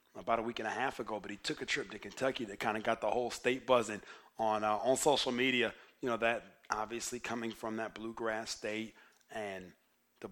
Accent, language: American, English